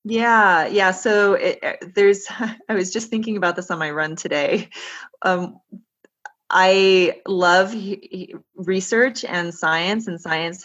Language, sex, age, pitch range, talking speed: English, female, 30-49, 160-200 Hz, 140 wpm